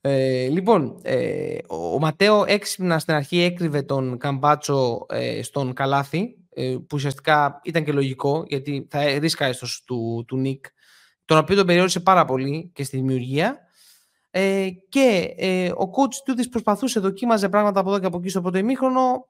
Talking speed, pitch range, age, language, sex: 165 wpm, 145-195 Hz, 20-39, Greek, male